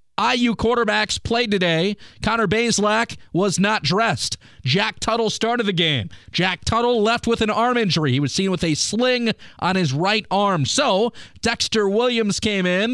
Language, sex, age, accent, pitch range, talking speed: English, male, 30-49, American, 170-230 Hz, 165 wpm